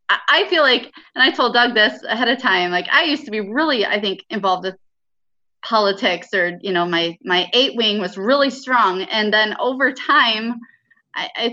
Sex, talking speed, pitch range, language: female, 195 wpm, 195-240 Hz, English